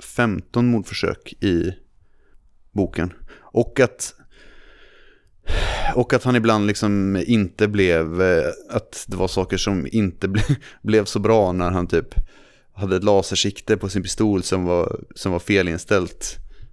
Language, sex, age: Swedish, male, 30-49